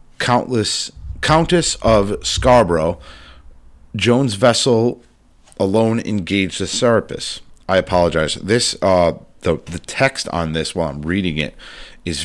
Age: 40-59